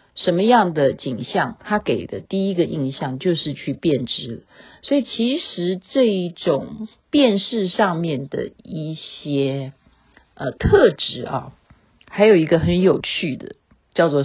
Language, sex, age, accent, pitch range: Chinese, female, 50-69, native, 150-210 Hz